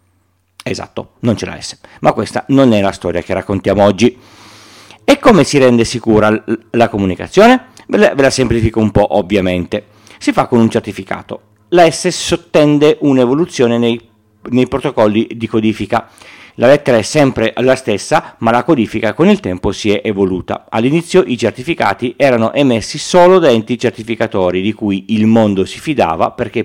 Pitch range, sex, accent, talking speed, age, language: 100-125 Hz, male, native, 160 wpm, 40-59, Italian